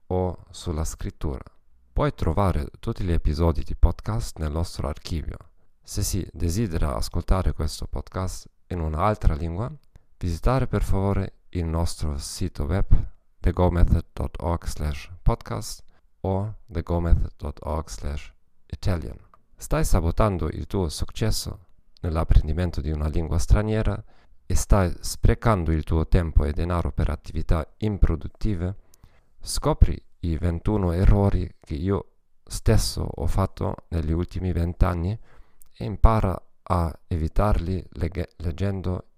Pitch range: 80-95 Hz